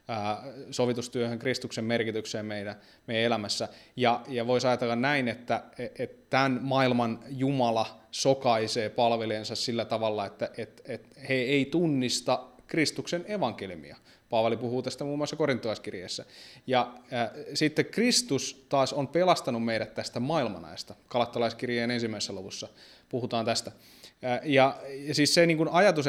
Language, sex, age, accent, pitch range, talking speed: Finnish, male, 20-39, native, 115-135 Hz, 125 wpm